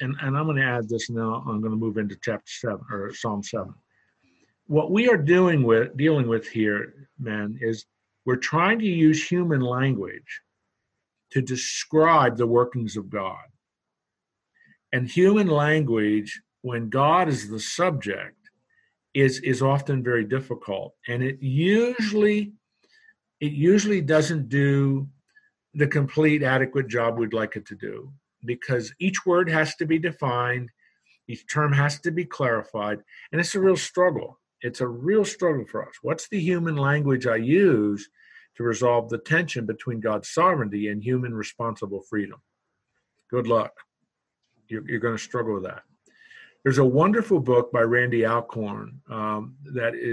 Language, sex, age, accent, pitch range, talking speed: English, male, 50-69, American, 115-155 Hz, 155 wpm